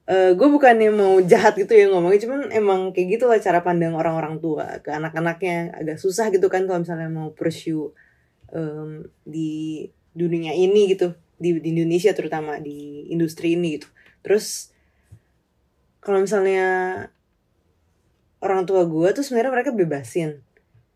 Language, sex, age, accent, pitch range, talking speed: Indonesian, female, 20-39, native, 165-200 Hz, 140 wpm